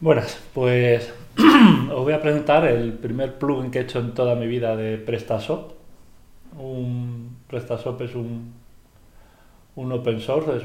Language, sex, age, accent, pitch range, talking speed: English, male, 40-59, Spanish, 115-135 Hz, 140 wpm